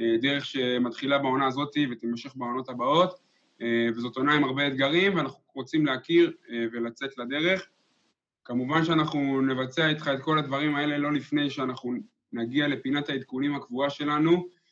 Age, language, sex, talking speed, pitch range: 20-39, Hebrew, male, 135 wpm, 125-150 Hz